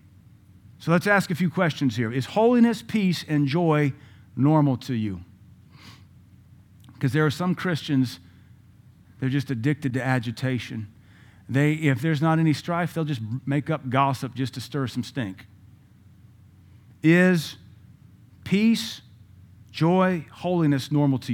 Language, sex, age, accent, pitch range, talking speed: English, male, 40-59, American, 110-150 Hz, 130 wpm